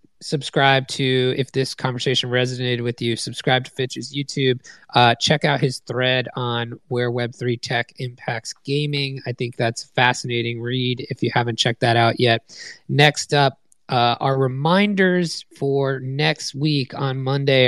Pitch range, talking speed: 125-150 Hz, 155 wpm